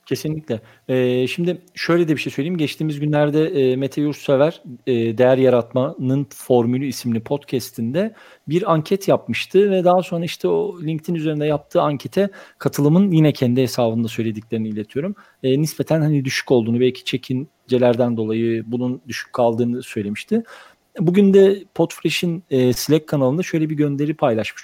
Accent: native